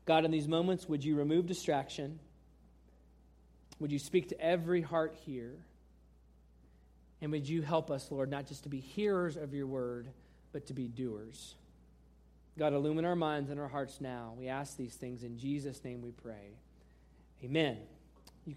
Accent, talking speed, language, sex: American, 170 wpm, English, male